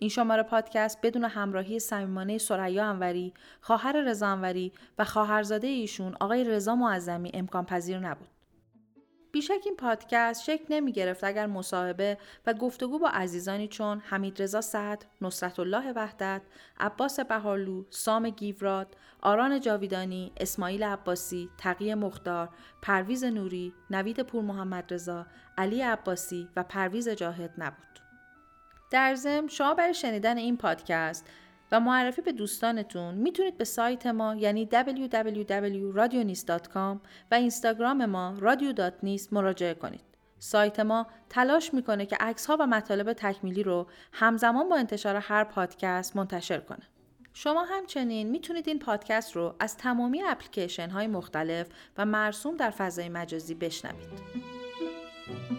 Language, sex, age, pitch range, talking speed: Persian, female, 40-59, 185-235 Hz, 130 wpm